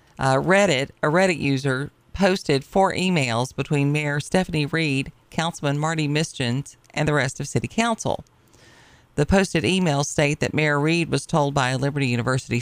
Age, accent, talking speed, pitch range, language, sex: 40-59, American, 155 wpm, 130-165 Hz, English, female